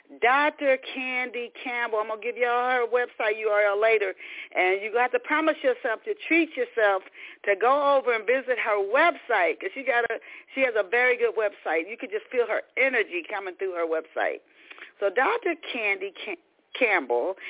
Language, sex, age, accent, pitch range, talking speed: English, female, 40-59, American, 190-300 Hz, 185 wpm